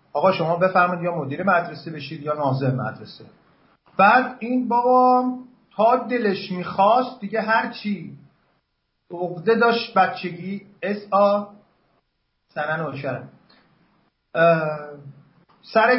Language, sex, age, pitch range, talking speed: English, male, 40-59, 150-225 Hz, 85 wpm